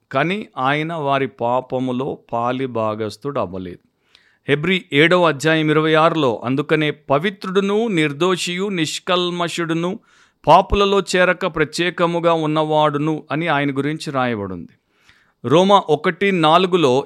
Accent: native